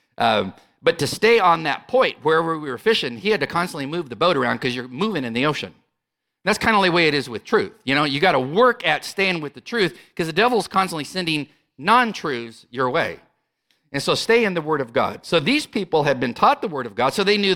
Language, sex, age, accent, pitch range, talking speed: English, male, 50-69, American, 130-185 Hz, 255 wpm